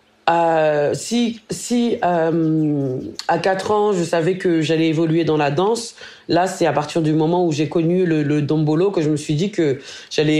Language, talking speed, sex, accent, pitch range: French, 190 wpm, female, French, 155-190 Hz